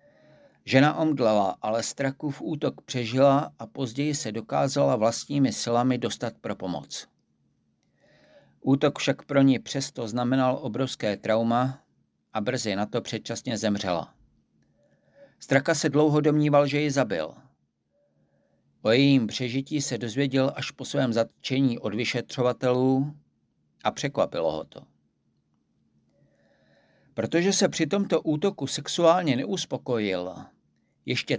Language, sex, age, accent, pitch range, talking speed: Czech, male, 50-69, native, 110-145 Hz, 115 wpm